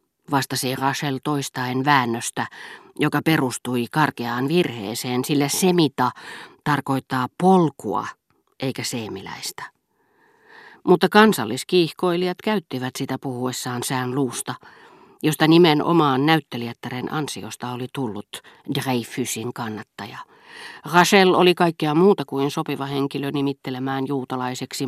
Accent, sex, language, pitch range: native, female, Finnish, 125-165 Hz